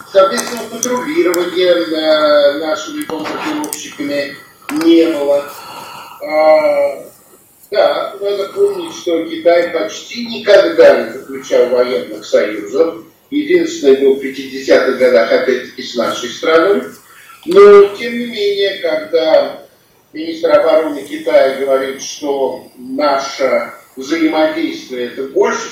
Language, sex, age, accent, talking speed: Russian, male, 50-69, native, 95 wpm